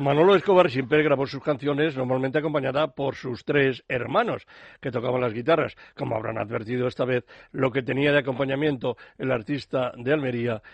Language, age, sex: Spanish, 60-79, male